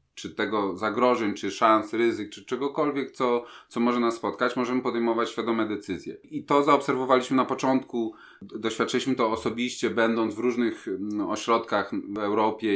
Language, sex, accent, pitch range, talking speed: Polish, male, native, 100-125 Hz, 145 wpm